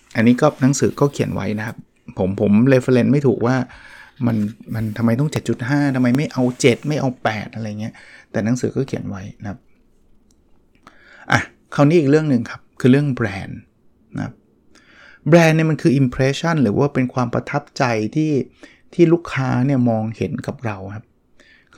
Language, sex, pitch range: Thai, male, 115-145 Hz